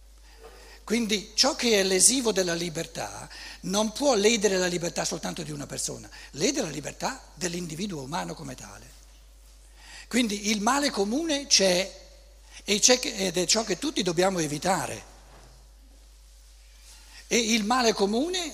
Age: 60-79